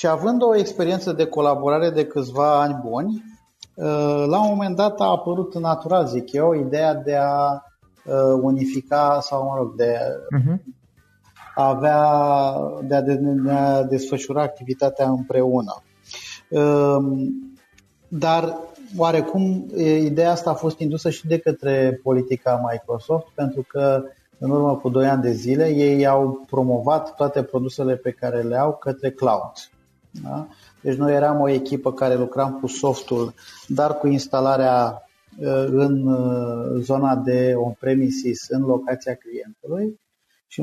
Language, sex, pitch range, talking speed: Romanian, male, 130-150 Hz, 125 wpm